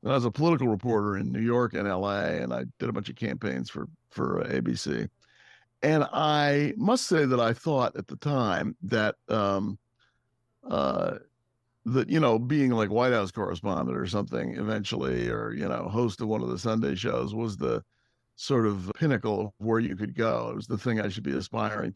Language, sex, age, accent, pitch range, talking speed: English, male, 60-79, American, 105-130 Hz, 195 wpm